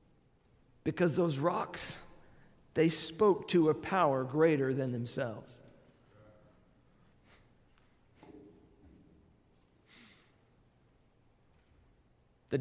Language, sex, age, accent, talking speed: English, male, 50-69, American, 55 wpm